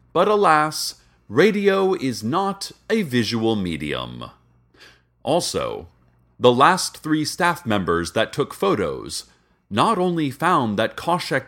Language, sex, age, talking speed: English, male, 40-59, 115 wpm